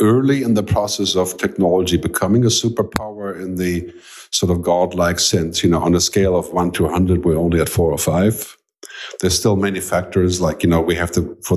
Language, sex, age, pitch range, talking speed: Dutch, male, 50-69, 90-110 Hz, 220 wpm